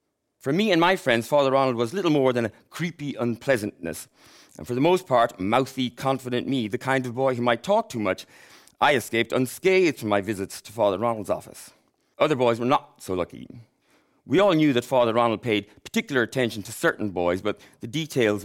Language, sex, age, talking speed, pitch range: English, male, 30-49, 200 wpm, 110-135 Hz